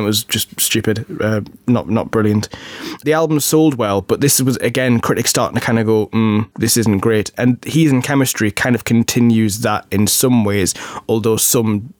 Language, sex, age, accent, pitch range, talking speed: English, male, 20-39, British, 110-135 Hz, 195 wpm